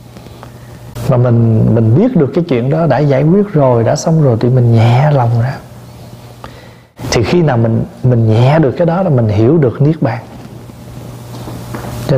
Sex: male